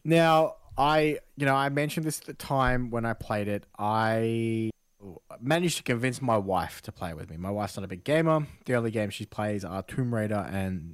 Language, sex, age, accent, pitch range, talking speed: English, male, 20-39, Australian, 95-120 Hz, 220 wpm